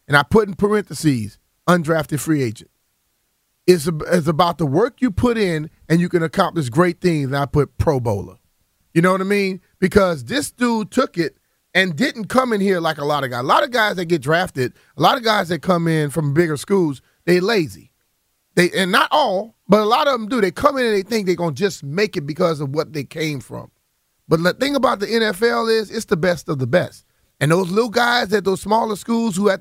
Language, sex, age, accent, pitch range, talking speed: English, male, 30-49, American, 165-235 Hz, 235 wpm